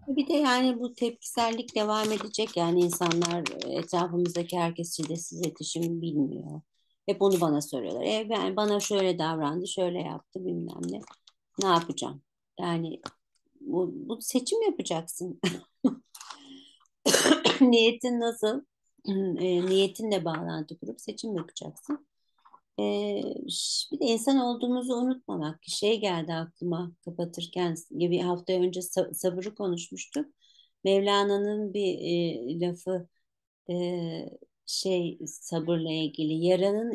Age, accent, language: 50-69, native, Turkish